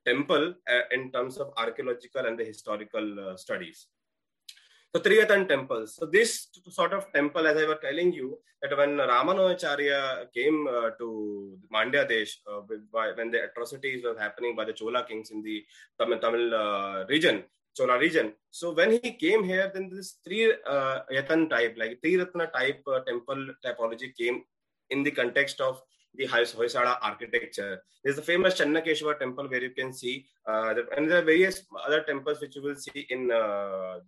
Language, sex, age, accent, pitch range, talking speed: English, male, 30-49, Indian, 115-170 Hz, 170 wpm